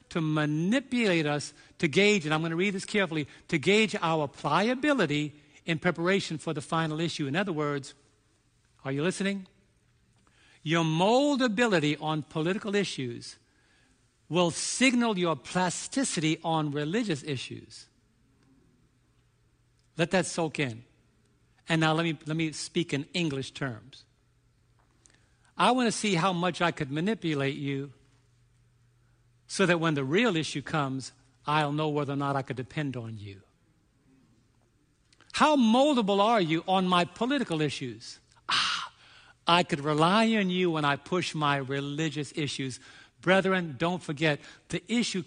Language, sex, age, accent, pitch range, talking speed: English, male, 60-79, American, 135-180 Hz, 140 wpm